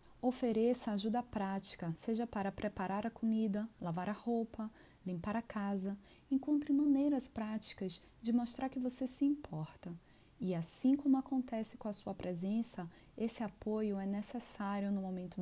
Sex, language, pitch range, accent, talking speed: female, Portuguese, 190-240 Hz, Brazilian, 145 wpm